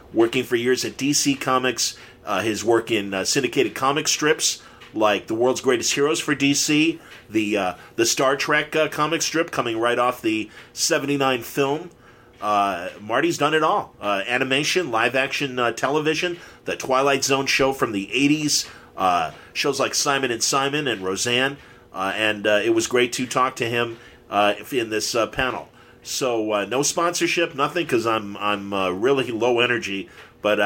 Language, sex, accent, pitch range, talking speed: English, male, American, 110-150 Hz, 175 wpm